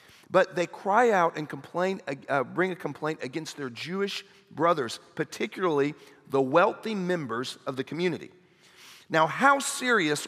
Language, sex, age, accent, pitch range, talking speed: English, male, 40-59, American, 135-185 Hz, 140 wpm